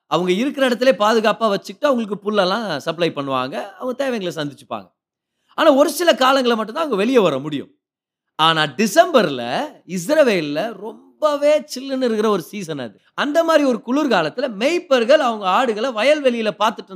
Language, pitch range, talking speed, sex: Tamil, 175-265 Hz, 140 wpm, male